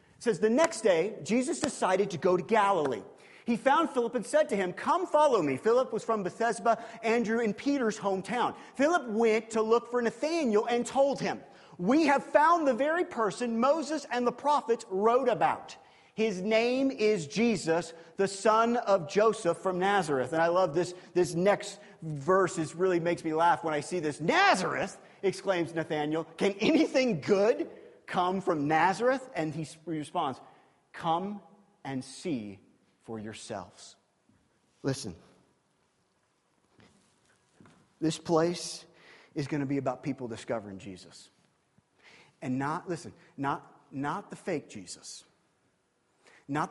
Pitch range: 160-230 Hz